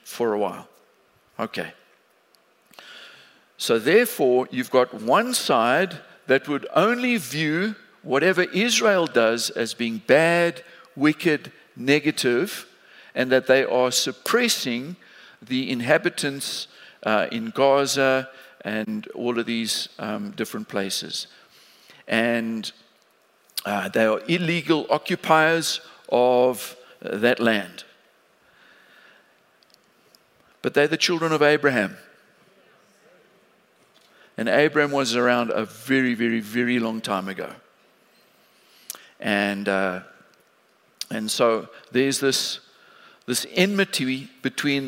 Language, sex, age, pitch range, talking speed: English, male, 50-69, 115-150 Hz, 100 wpm